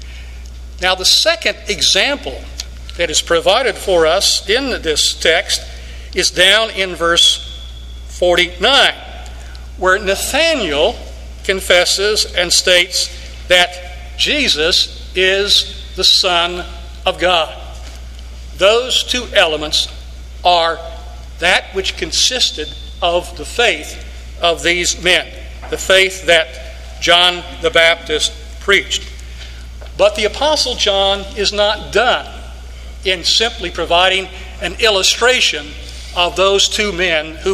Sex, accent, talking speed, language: male, American, 105 wpm, English